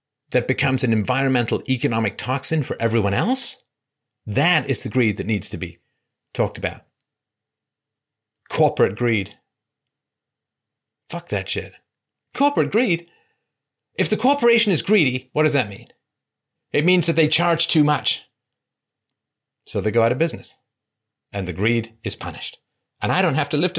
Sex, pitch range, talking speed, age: male, 115-155 Hz, 150 wpm, 40-59